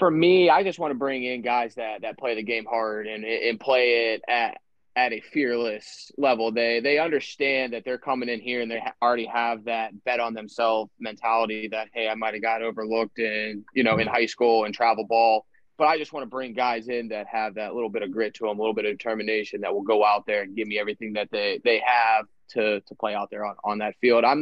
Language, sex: English, male